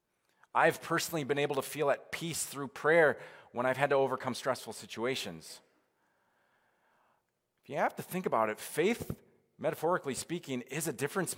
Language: English